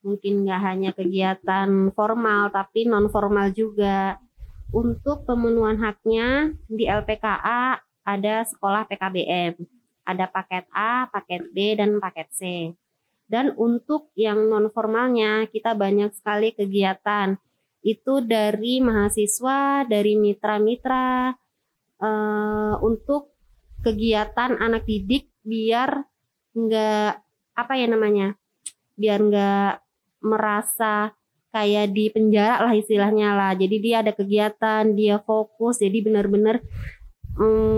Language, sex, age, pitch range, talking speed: Indonesian, female, 20-39, 205-230 Hz, 100 wpm